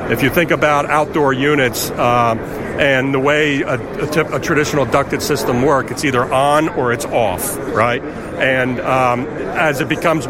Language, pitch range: English, 120-150 Hz